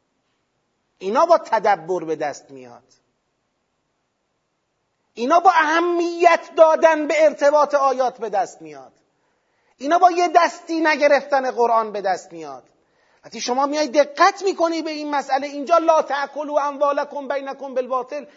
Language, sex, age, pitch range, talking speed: Persian, male, 40-59, 250-330 Hz, 125 wpm